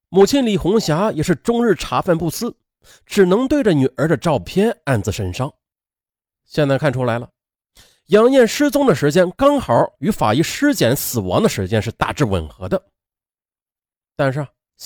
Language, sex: Chinese, male